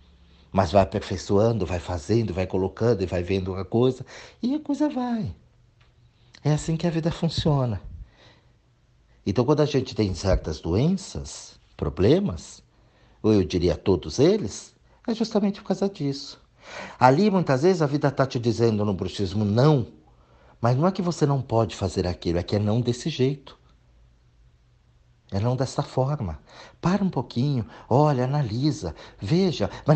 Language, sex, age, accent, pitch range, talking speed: Portuguese, male, 50-69, Brazilian, 95-150 Hz, 155 wpm